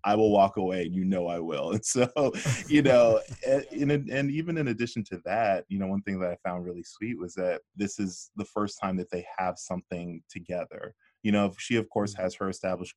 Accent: American